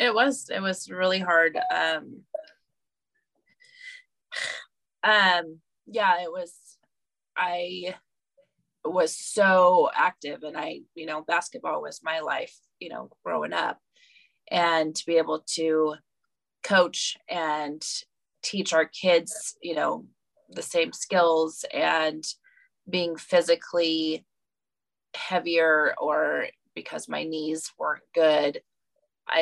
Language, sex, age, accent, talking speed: English, female, 20-39, American, 110 wpm